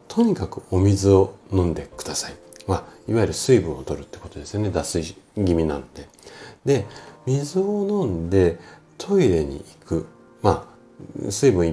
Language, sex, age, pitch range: Japanese, male, 40-59, 85-130 Hz